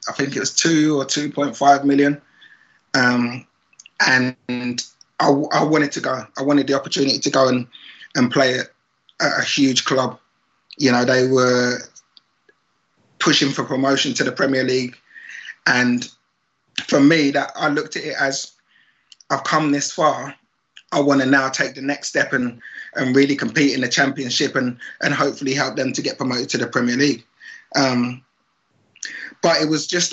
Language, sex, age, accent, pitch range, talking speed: English, male, 20-39, British, 125-145 Hz, 170 wpm